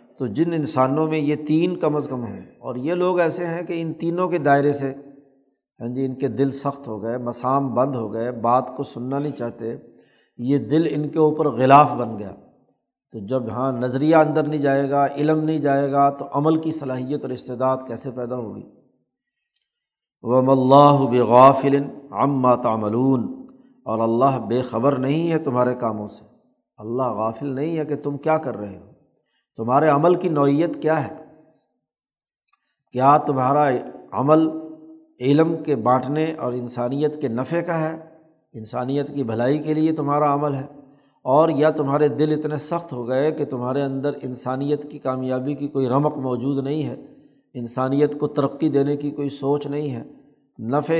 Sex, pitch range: male, 130-150 Hz